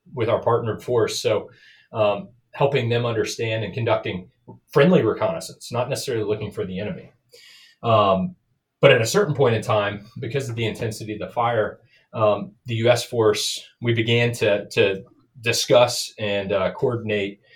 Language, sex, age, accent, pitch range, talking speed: English, male, 30-49, American, 105-125 Hz, 155 wpm